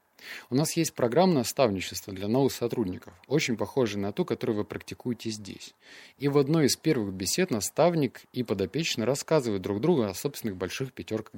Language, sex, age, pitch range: Russian, male, 20-39, 100-135 Hz